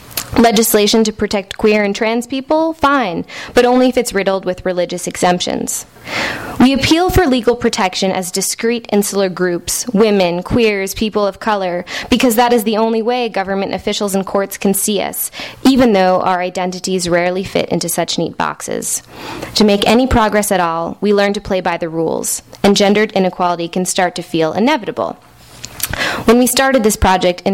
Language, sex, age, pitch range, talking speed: English, female, 20-39, 185-225 Hz, 175 wpm